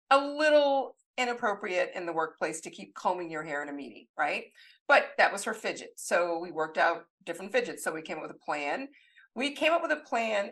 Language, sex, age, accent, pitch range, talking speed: English, female, 50-69, American, 170-250 Hz, 220 wpm